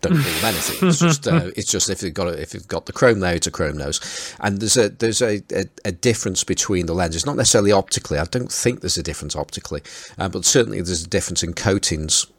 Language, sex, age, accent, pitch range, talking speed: English, male, 40-59, British, 85-105 Hz, 245 wpm